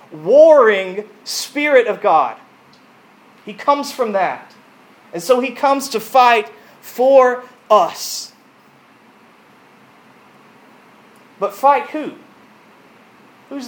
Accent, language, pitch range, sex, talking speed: American, English, 205-265 Hz, male, 90 wpm